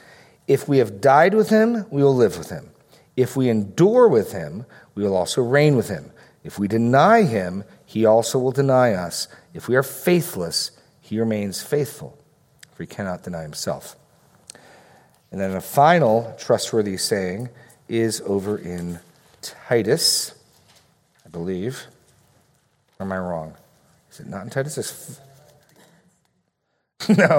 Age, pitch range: 40-59, 95-150 Hz